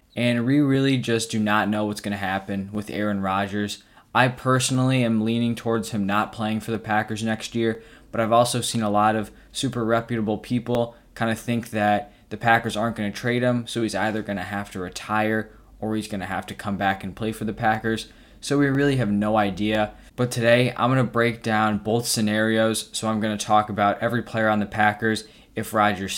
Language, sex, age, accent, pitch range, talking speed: English, male, 20-39, American, 105-120 Hz, 220 wpm